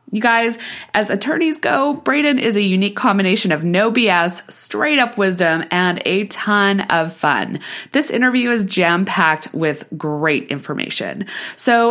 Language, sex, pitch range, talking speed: English, female, 165-235 Hz, 140 wpm